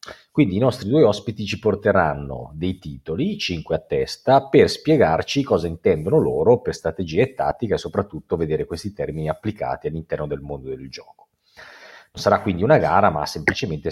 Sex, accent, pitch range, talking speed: male, native, 80-120 Hz, 170 wpm